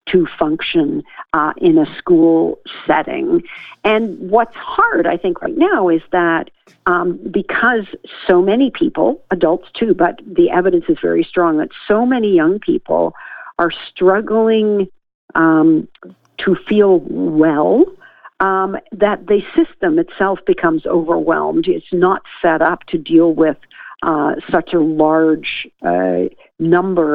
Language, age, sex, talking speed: English, 50-69, female, 135 wpm